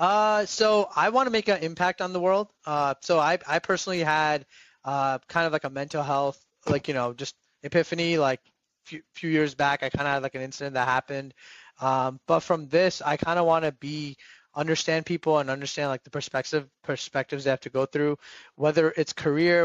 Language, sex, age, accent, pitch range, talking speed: English, male, 20-39, American, 135-160 Hz, 210 wpm